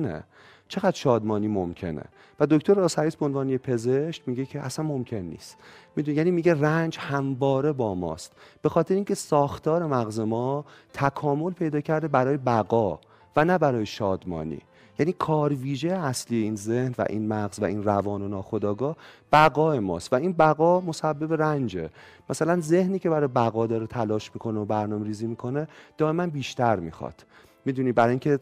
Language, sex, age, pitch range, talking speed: Persian, male, 30-49, 110-150 Hz, 155 wpm